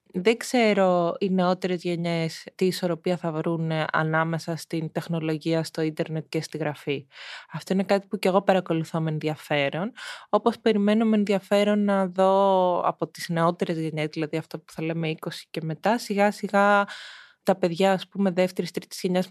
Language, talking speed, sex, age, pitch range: Greek, 160 wpm, female, 20-39, 165-215 Hz